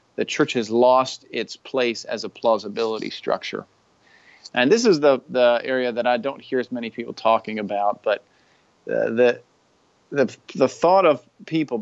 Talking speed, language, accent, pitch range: 170 wpm, English, American, 110-130 Hz